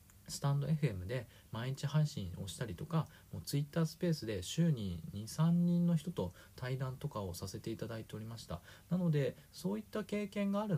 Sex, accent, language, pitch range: male, native, Japanese, 105-160 Hz